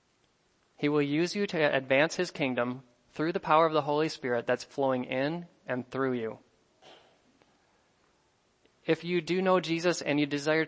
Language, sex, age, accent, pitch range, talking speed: English, male, 20-39, American, 125-150 Hz, 165 wpm